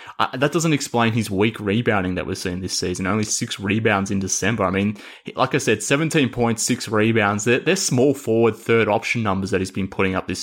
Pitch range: 100-115 Hz